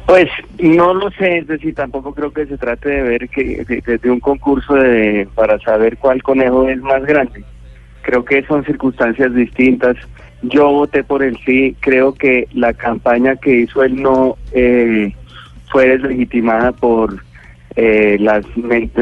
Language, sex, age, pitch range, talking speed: Spanish, male, 30-49, 115-135 Hz, 155 wpm